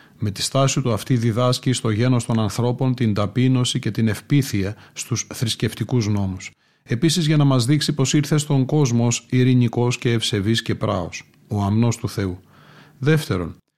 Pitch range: 110-135 Hz